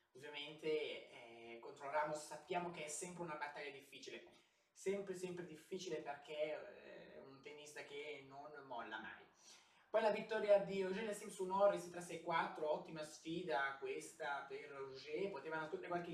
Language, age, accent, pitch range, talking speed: Italian, 20-39, native, 150-190 Hz, 145 wpm